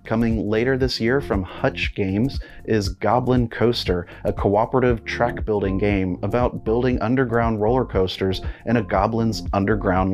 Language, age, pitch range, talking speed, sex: English, 30-49, 100-120 Hz, 135 wpm, male